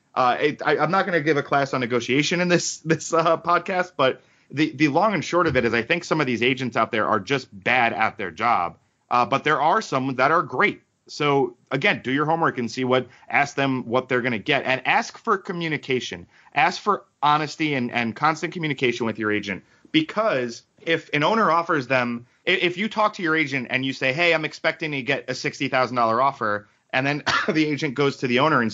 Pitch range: 120-155 Hz